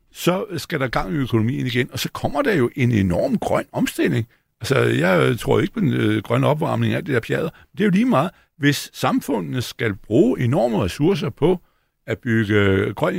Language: Danish